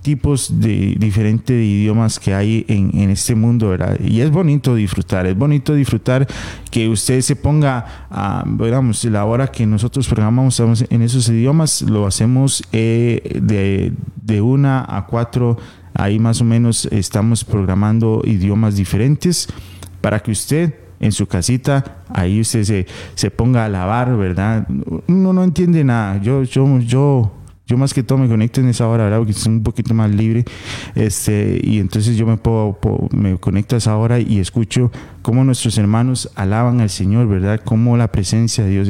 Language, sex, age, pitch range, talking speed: Spanish, male, 30-49, 105-125 Hz, 170 wpm